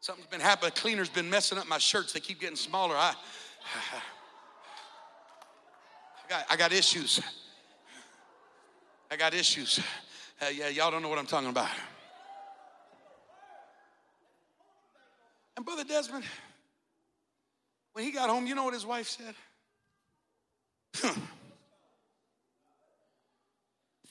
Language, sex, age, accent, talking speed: English, male, 50-69, American, 115 wpm